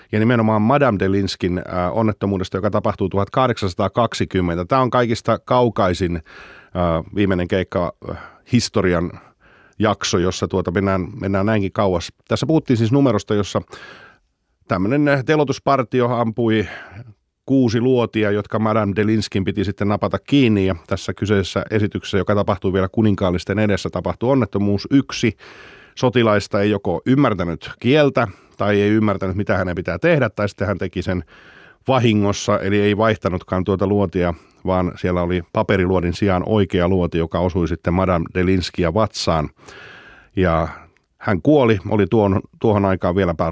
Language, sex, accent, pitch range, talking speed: Finnish, male, native, 95-115 Hz, 130 wpm